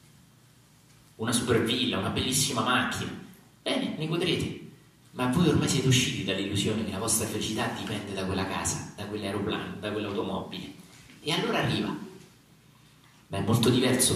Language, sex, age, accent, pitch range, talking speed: Italian, male, 40-59, native, 105-150 Hz, 145 wpm